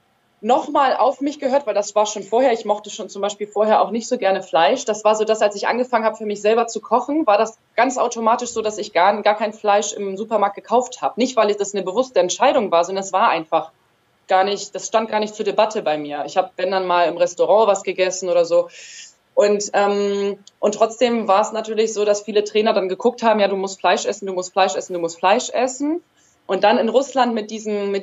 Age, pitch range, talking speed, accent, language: 20-39, 200-230 Hz, 240 wpm, German, German